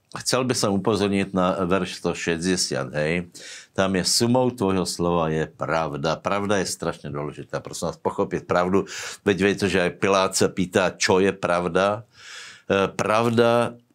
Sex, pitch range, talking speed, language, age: male, 85-100 Hz, 155 wpm, Slovak, 60-79